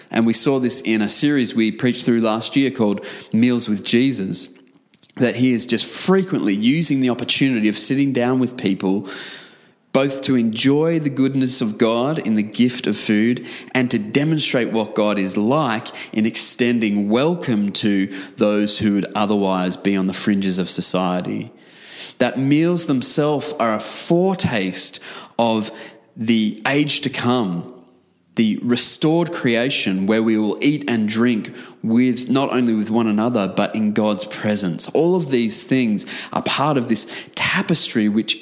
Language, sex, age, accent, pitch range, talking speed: English, male, 20-39, Australian, 105-135 Hz, 160 wpm